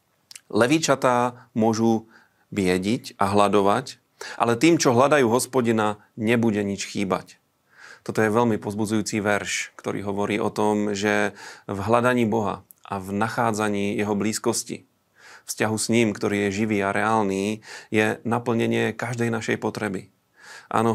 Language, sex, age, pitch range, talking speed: Slovak, male, 30-49, 100-115 Hz, 130 wpm